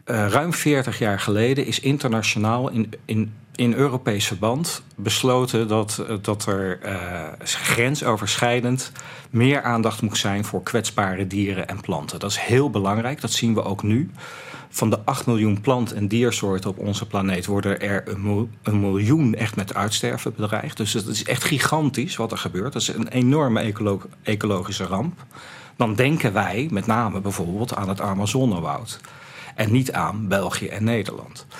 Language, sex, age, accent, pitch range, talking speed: Dutch, male, 40-59, Dutch, 105-140 Hz, 160 wpm